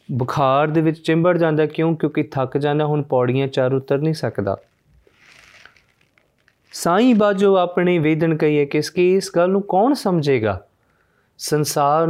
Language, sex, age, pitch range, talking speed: Punjabi, male, 30-49, 130-165 Hz, 140 wpm